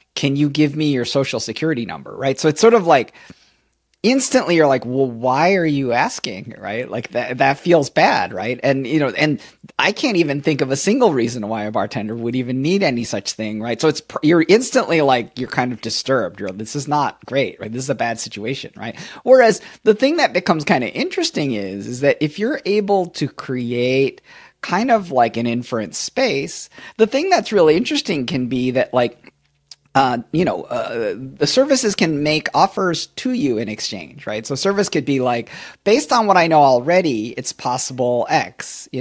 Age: 40-59